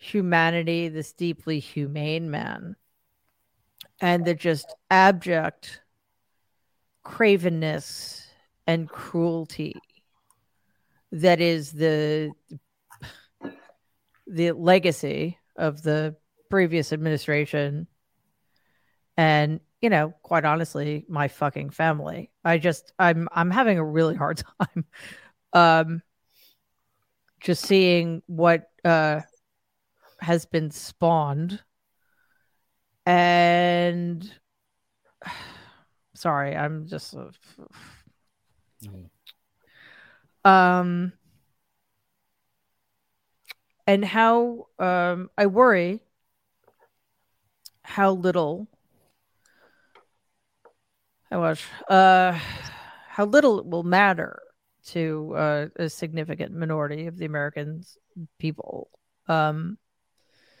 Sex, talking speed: female, 75 wpm